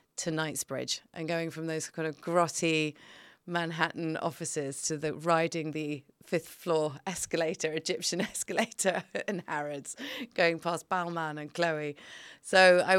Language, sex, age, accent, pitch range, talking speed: English, female, 30-49, British, 155-175 Hz, 135 wpm